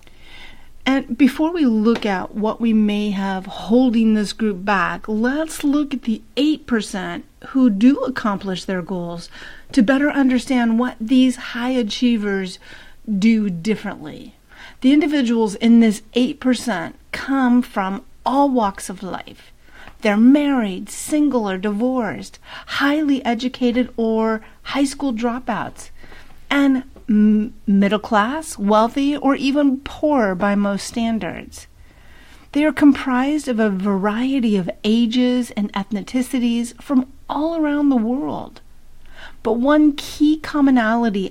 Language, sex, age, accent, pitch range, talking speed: English, female, 50-69, American, 210-265 Hz, 120 wpm